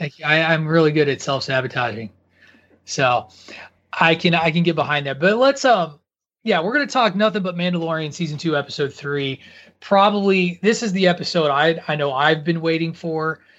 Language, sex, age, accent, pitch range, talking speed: English, male, 30-49, American, 140-185 Hz, 180 wpm